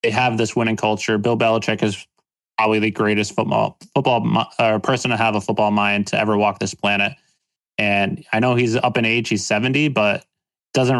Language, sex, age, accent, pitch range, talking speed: English, male, 20-39, American, 105-115 Hz, 195 wpm